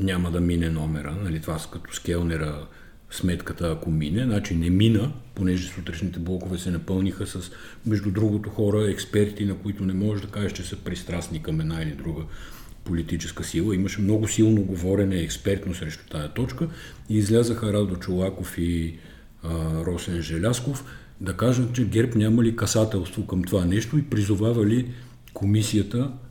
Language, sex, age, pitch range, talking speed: Bulgarian, male, 50-69, 85-115 Hz, 155 wpm